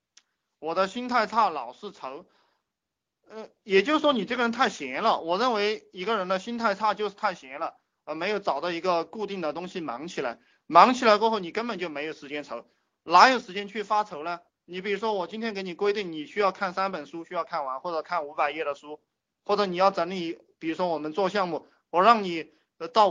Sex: male